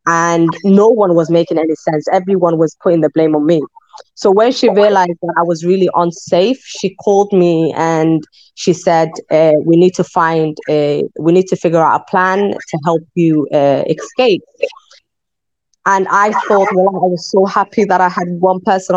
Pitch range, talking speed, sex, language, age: 165-195 Hz, 190 wpm, female, English, 20-39